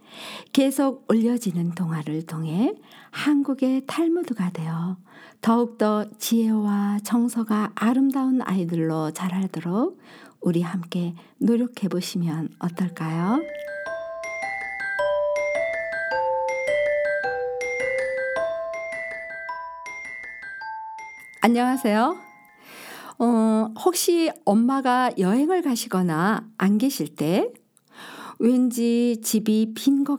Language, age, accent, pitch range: Korean, 50-69, native, 185-270 Hz